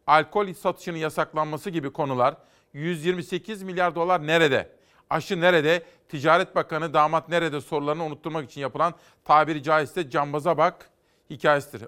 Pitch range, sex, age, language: 150-185 Hz, male, 40-59, Turkish